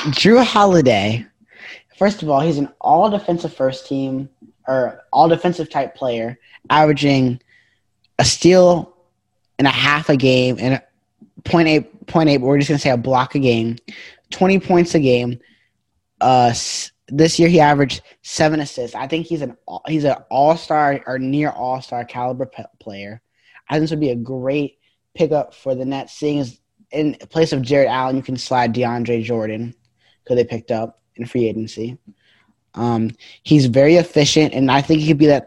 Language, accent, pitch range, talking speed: English, American, 120-150 Hz, 160 wpm